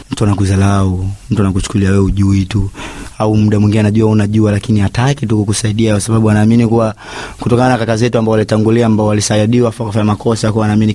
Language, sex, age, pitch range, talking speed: Swahili, male, 30-49, 110-130 Hz, 225 wpm